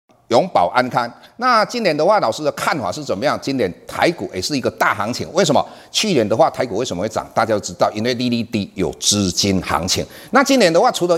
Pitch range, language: 135-185 Hz, Chinese